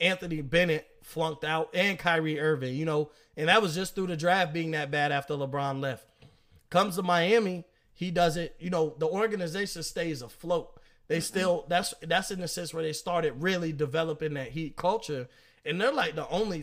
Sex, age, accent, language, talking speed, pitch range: male, 30-49, American, English, 190 wpm, 160-195 Hz